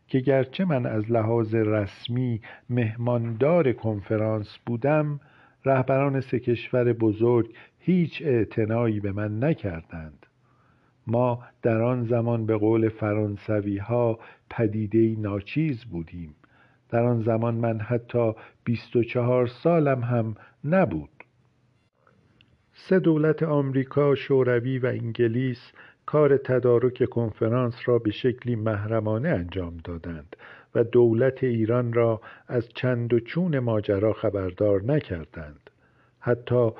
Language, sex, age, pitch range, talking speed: Persian, male, 50-69, 110-135 Hz, 105 wpm